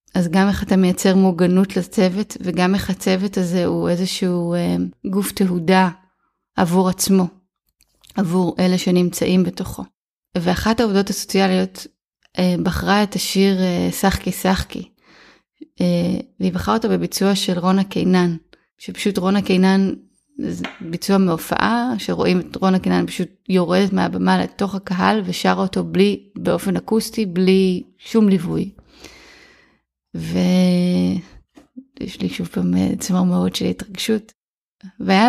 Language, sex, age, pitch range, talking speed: Hebrew, female, 20-39, 180-195 Hz, 120 wpm